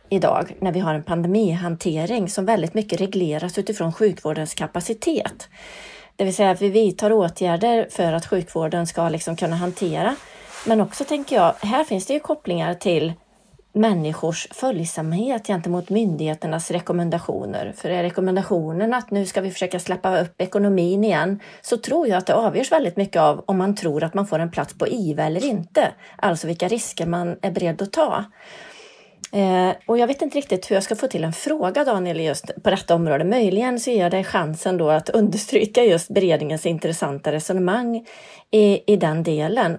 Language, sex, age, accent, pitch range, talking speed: Swedish, female, 30-49, native, 170-210 Hz, 175 wpm